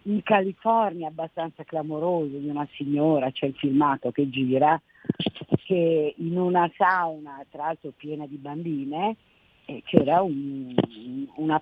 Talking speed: 120 wpm